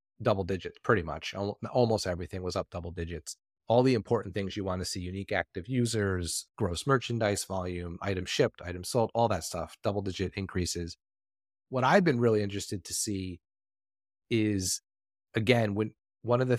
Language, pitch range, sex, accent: English, 95-115 Hz, male, American